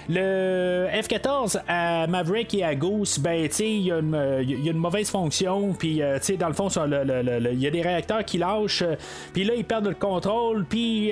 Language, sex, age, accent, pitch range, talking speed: French, male, 30-49, Canadian, 125-185 Hz, 195 wpm